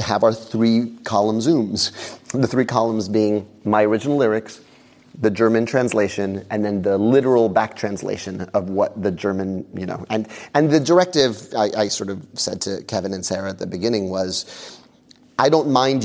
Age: 30-49